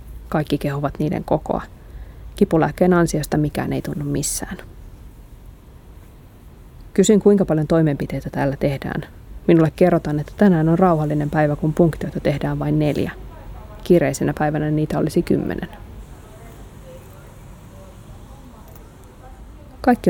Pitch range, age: 135-175 Hz, 20-39